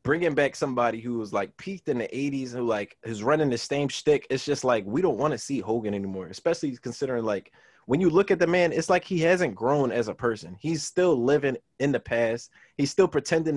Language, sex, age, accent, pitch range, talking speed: English, male, 20-39, American, 115-160 Hz, 240 wpm